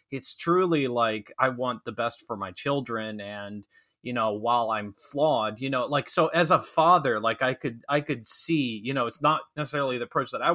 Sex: male